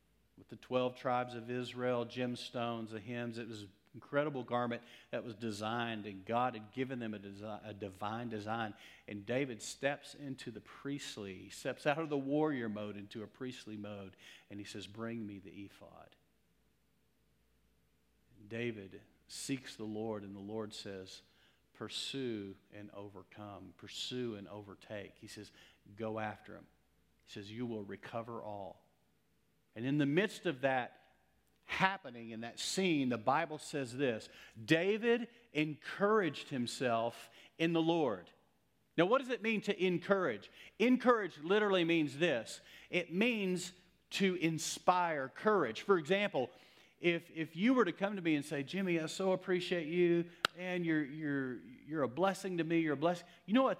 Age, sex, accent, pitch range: 50-69, male, American, 110-165 Hz